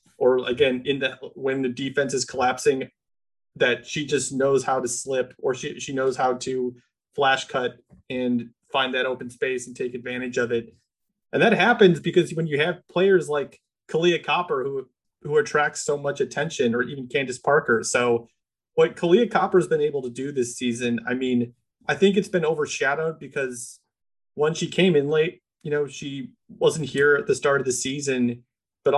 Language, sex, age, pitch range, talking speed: English, male, 30-49, 125-175 Hz, 185 wpm